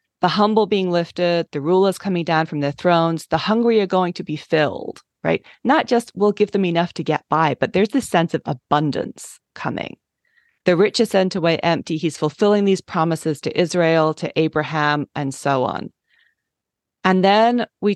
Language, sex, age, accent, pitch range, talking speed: English, female, 40-59, American, 155-195 Hz, 185 wpm